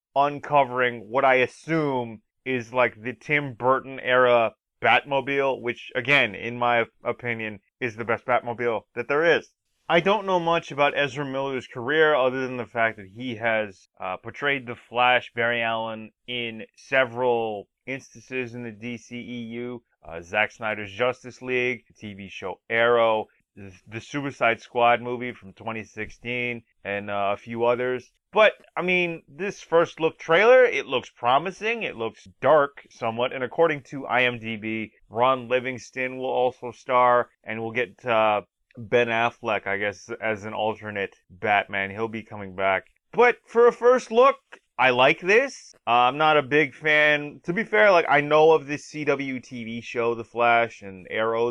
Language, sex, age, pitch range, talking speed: English, male, 30-49, 115-140 Hz, 160 wpm